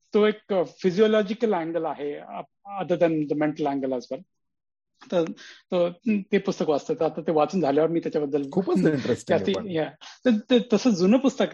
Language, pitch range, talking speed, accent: Marathi, 155-205 Hz, 120 wpm, native